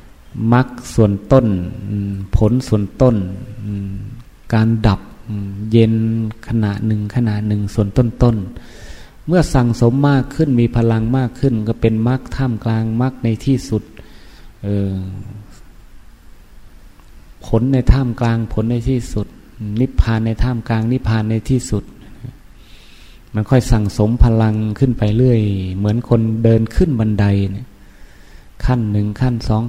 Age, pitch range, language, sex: 20-39, 105-120 Hz, Thai, male